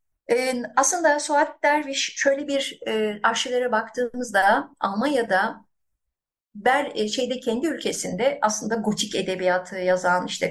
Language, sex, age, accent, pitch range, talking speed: Turkish, female, 50-69, native, 190-255 Hz, 110 wpm